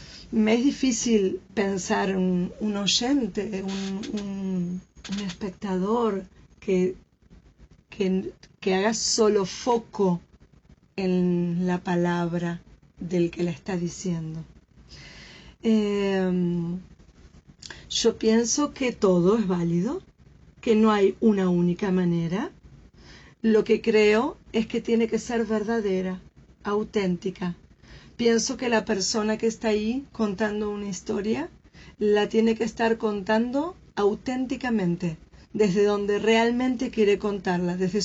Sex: female